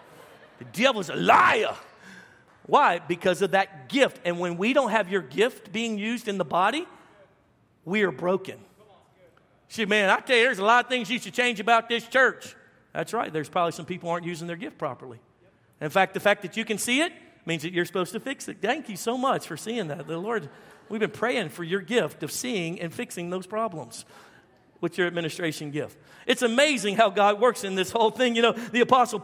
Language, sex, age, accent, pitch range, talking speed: English, male, 50-69, American, 185-235 Hz, 215 wpm